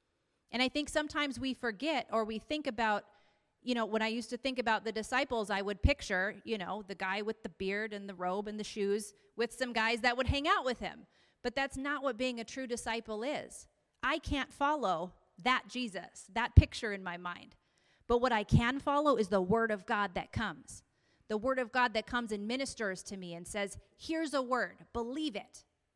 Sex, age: female, 30-49